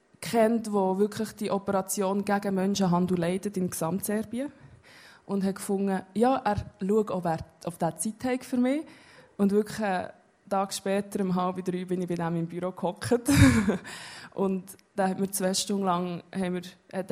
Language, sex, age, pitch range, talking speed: German, female, 20-39, 185-220 Hz, 160 wpm